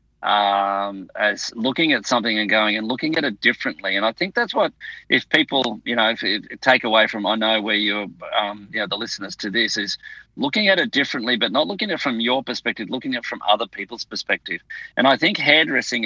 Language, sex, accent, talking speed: English, male, Australian, 220 wpm